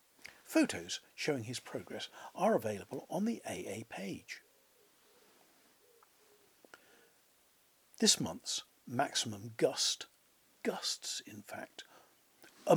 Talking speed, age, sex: 85 wpm, 50-69, male